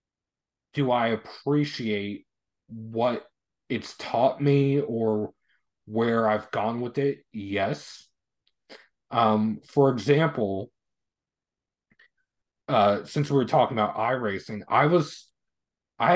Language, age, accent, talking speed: English, 30-49, American, 100 wpm